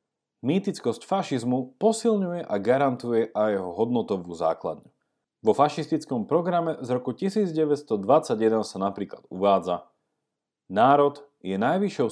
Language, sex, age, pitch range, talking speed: Slovak, male, 40-59, 110-185 Hz, 105 wpm